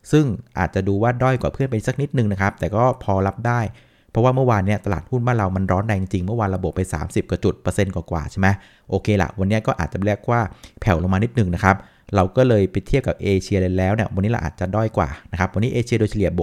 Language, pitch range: Thai, 95-120 Hz